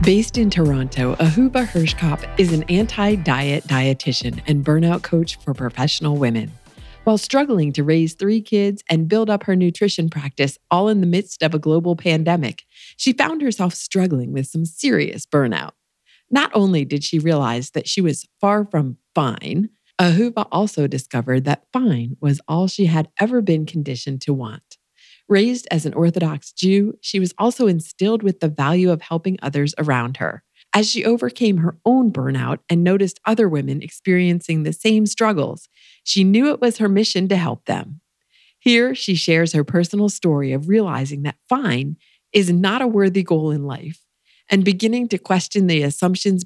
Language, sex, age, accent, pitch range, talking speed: English, female, 50-69, American, 150-200 Hz, 170 wpm